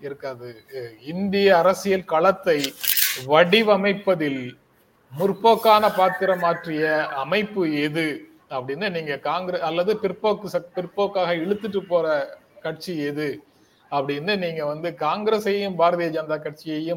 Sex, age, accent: male, 30-49, native